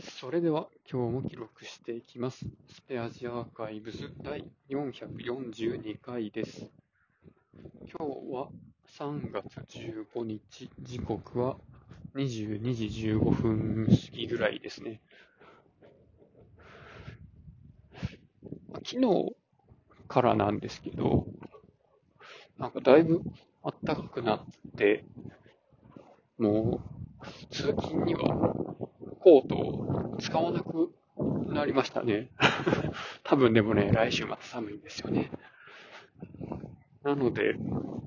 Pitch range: 115-140 Hz